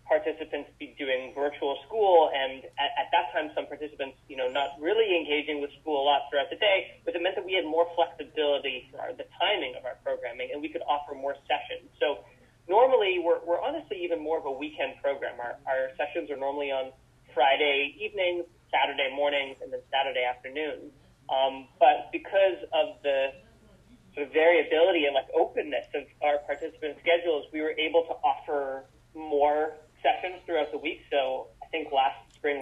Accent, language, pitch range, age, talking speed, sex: American, English, 135-170 Hz, 30-49, 185 wpm, male